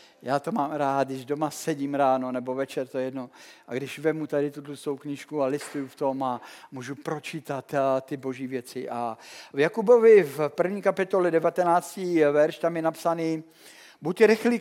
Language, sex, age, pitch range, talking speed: Czech, male, 50-69, 155-200 Hz, 175 wpm